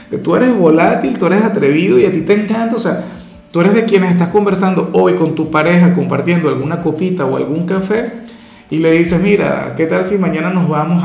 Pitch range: 140-175 Hz